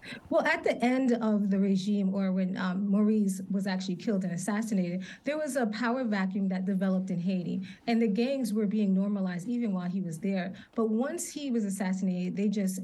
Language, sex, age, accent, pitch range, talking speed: English, female, 30-49, American, 190-230 Hz, 200 wpm